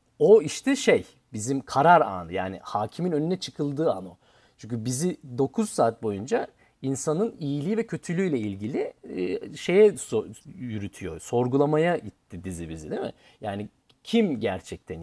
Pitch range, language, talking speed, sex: 115-160 Hz, Turkish, 130 wpm, male